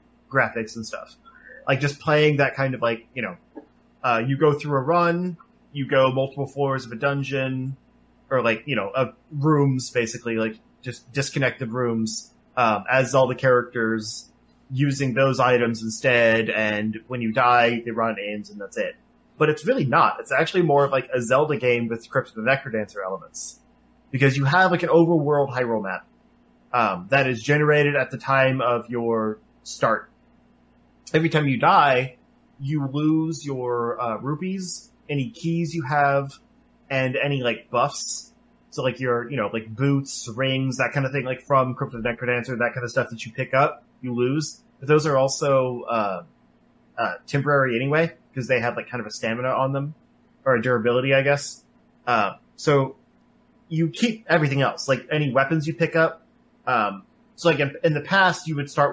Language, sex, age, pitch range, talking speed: English, male, 20-39, 120-150 Hz, 180 wpm